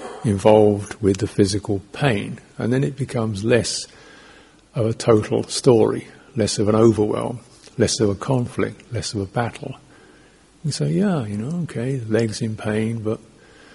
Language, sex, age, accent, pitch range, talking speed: English, male, 50-69, British, 110-130 Hz, 160 wpm